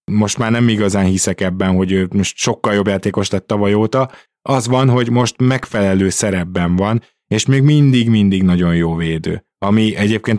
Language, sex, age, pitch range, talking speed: Hungarian, male, 20-39, 95-110 Hz, 175 wpm